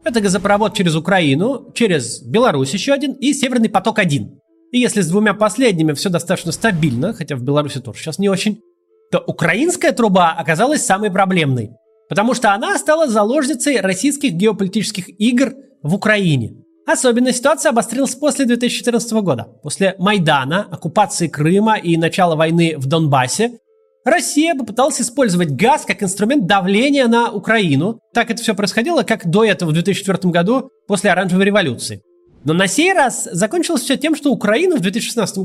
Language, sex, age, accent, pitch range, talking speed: Russian, male, 30-49, native, 170-255 Hz, 155 wpm